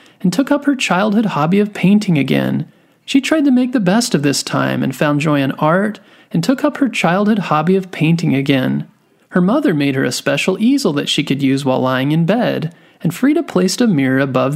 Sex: male